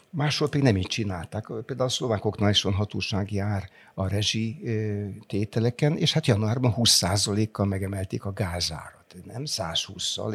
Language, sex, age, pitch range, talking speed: Hungarian, male, 60-79, 100-120 Hz, 130 wpm